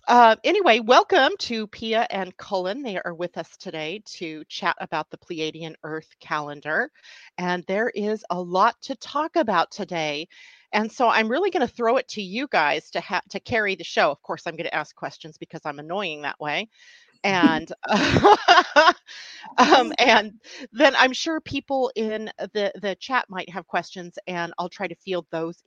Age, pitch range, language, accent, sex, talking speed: 40-59, 175-240 Hz, English, American, female, 180 wpm